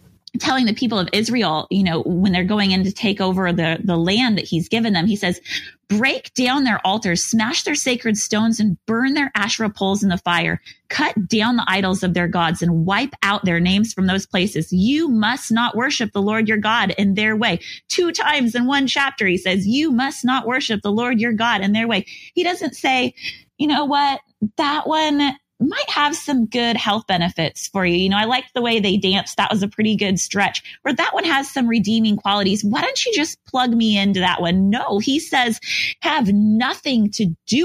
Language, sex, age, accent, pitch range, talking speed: English, female, 30-49, American, 195-255 Hz, 215 wpm